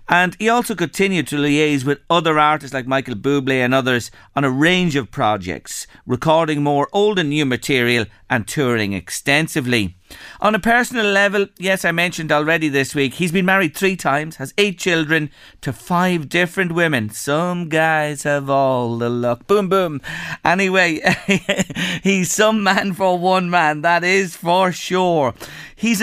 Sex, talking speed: male, 160 wpm